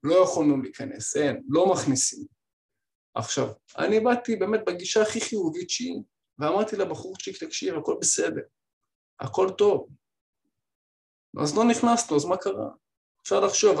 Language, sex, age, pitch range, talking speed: Hebrew, male, 20-39, 160-215 Hz, 125 wpm